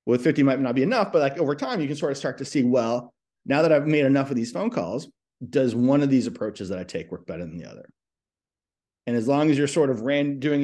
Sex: male